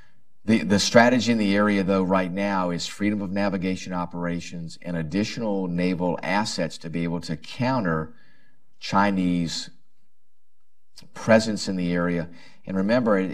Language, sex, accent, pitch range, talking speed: English, male, American, 85-100 Hz, 140 wpm